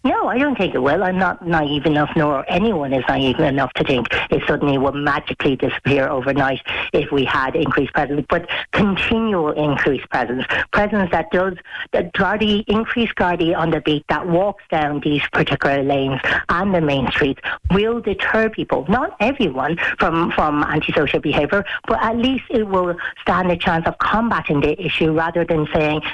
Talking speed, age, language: 170 wpm, 60-79, English